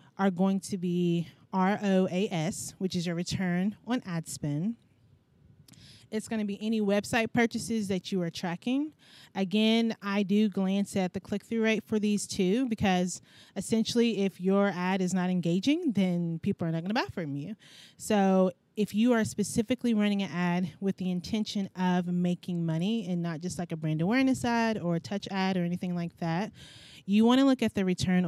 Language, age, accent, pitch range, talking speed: English, 20-39, American, 175-220 Hz, 185 wpm